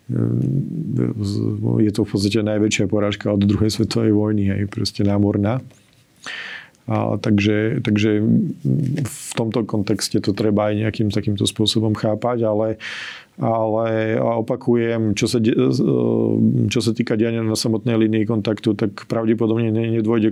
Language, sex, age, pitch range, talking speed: Slovak, male, 40-59, 105-115 Hz, 125 wpm